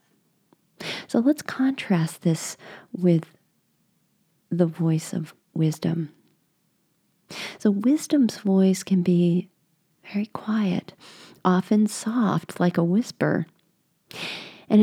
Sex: female